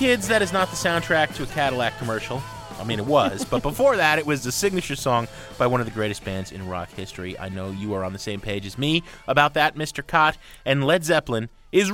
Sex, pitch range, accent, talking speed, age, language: male, 100-165 Hz, American, 245 wpm, 30-49, English